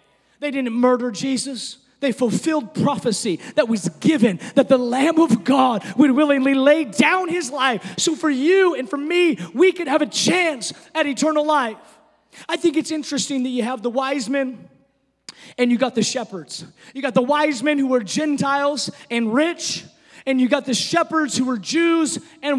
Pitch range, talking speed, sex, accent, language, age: 250-315 Hz, 185 wpm, male, American, English, 20-39